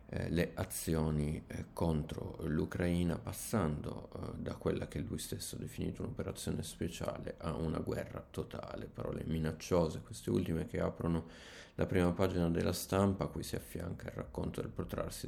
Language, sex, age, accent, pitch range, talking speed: Italian, male, 30-49, native, 80-95 Hz, 155 wpm